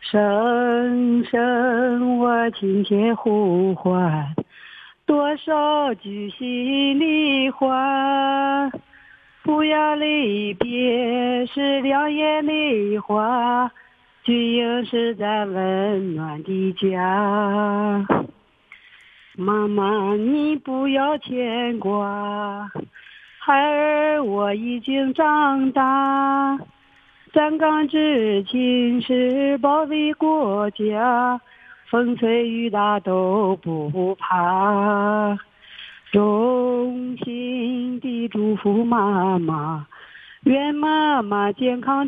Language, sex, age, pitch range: Chinese, female, 40-59, 205-275 Hz